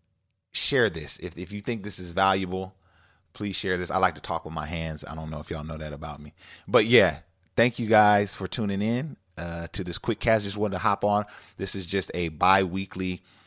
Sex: male